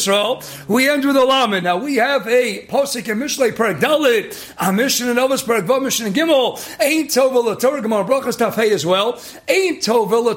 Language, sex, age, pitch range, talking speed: English, male, 40-59, 235-320 Hz, 185 wpm